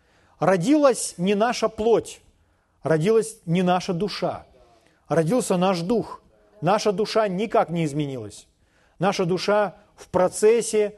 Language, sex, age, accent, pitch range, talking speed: Russian, male, 40-59, native, 170-220 Hz, 110 wpm